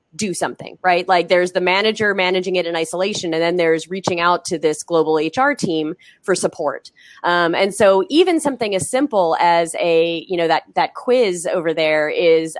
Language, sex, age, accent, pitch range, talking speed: English, female, 20-39, American, 165-195 Hz, 190 wpm